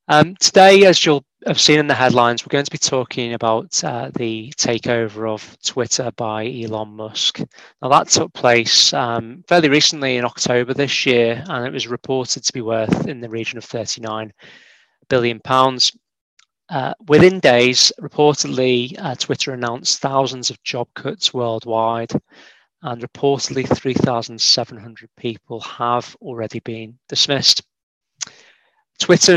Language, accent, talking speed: English, British, 140 wpm